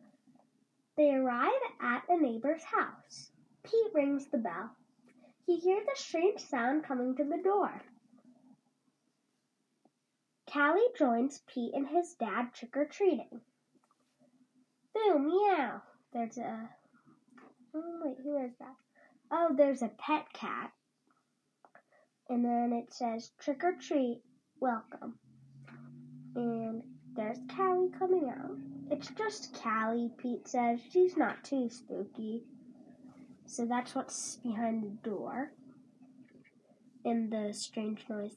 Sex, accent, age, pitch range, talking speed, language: female, American, 10-29, 235-290 Hz, 115 wpm, English